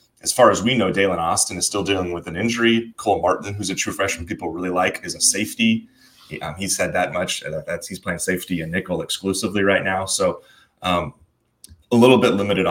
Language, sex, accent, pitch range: English, male, American, 90-105 Hz